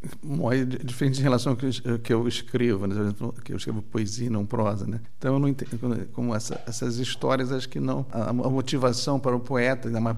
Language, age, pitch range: Portuguese, 50-69, 115-135 Hz